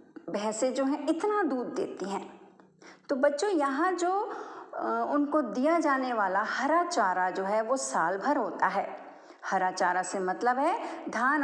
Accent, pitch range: native, 220-315 Hz